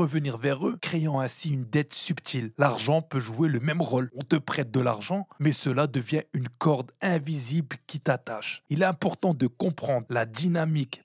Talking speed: 185 wpm